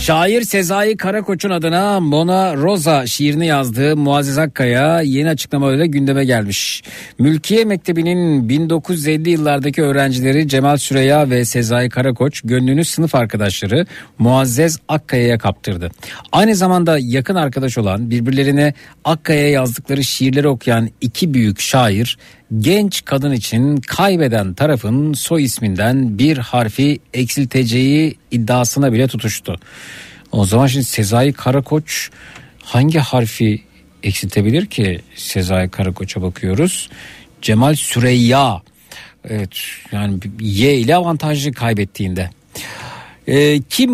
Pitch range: 120-160 Hz